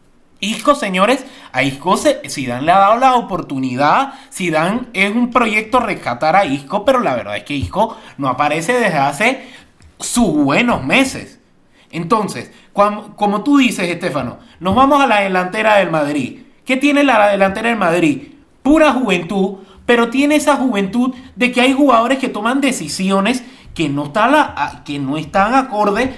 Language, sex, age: Spanish, male, 30-49